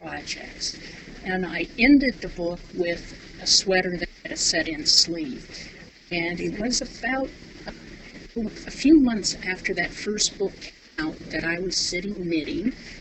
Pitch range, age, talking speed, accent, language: 165-220 Hz, 50-69, 150 wpm, American, English